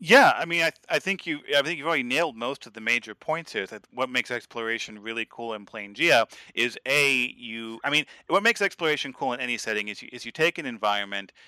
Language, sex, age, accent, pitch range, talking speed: English, male, 30-49, American, 105-130 Hz, 245 wpm